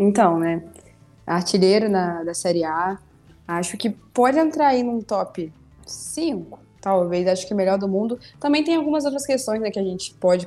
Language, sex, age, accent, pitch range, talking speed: Portuguese, female, 20-39, Brazilian, 175-215 Hz, 180 wpm